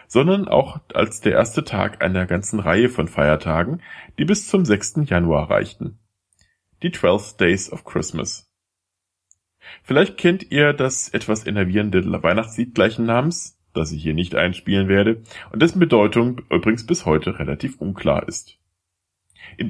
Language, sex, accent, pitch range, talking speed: German, male, German, 95-140 Hz, 145 wpm